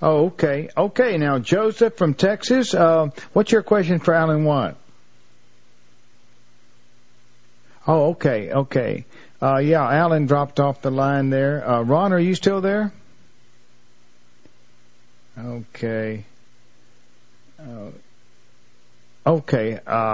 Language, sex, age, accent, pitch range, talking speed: English, male, 50-69, American, 115-170 Hz, 100 wpm